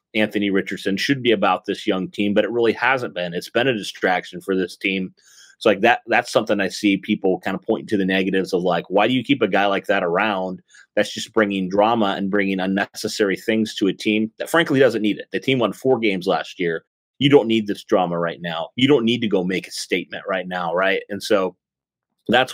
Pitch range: 95-115 Hz